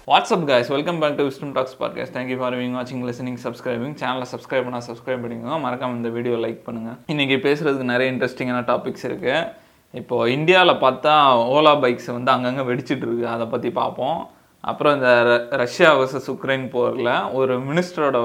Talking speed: 165 wpm